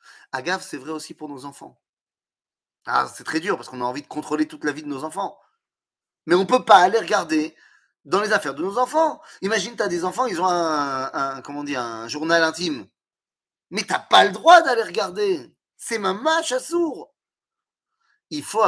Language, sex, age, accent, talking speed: French, male, 30-49, French, 215 wpm